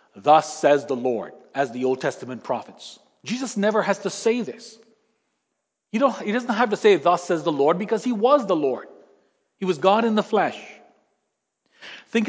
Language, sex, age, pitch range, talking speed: English, male, 40-59, 150-200 Hz, 185 wpm